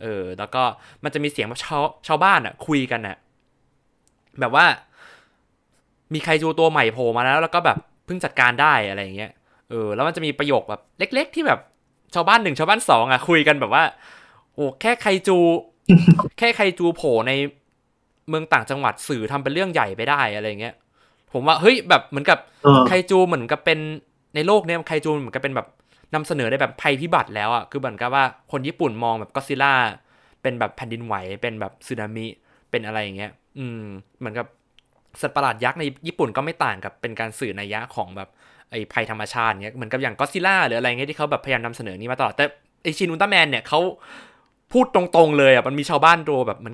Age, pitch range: 20-39, 120-165 Hz